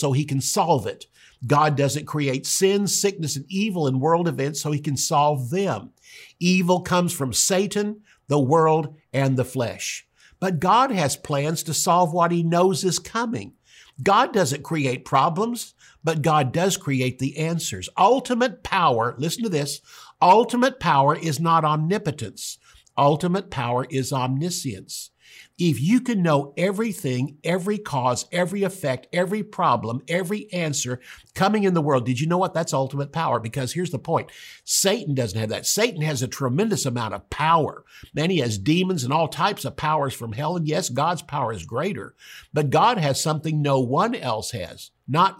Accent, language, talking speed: American, English, 170 wpm